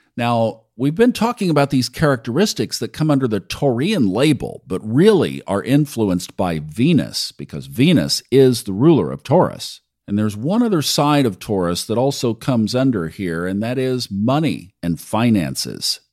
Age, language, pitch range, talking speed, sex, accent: 50-69, English, 95-135 Hz, 165 wpm, male, American